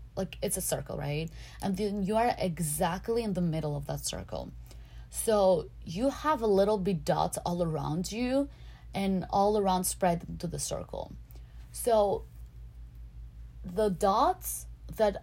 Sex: female